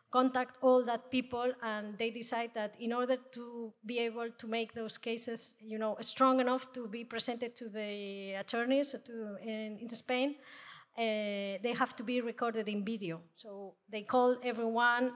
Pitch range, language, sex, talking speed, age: 220-255 Hz, French, female, 170 wpm, 20-39